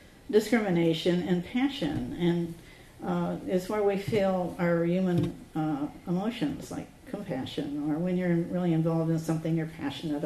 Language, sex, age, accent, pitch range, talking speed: English, female, 50-69, American, 150-170 Hz, 140 wpm